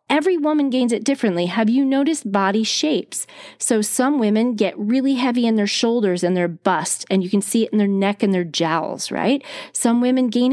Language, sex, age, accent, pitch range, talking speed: English, female, 30-49, American, 200-260 Hz, 210 wpm